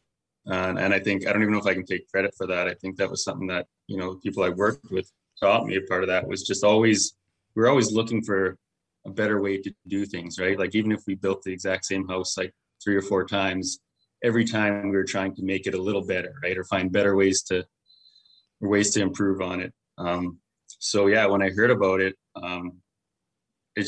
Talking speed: 235 wpm